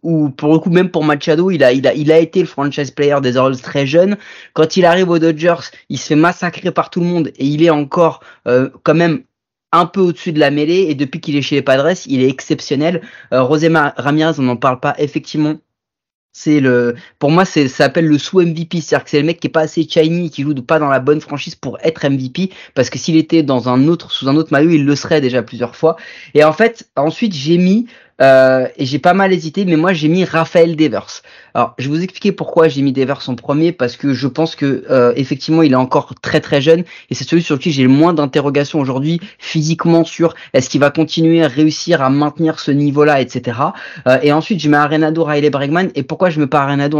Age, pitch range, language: 20-39, 140-170 Hz, French